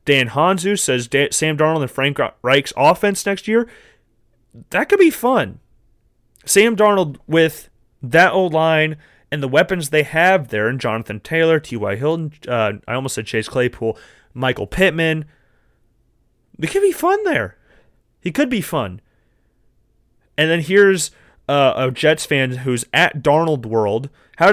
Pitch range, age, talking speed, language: 120-175 Hz, 30-49, 150 wpm, English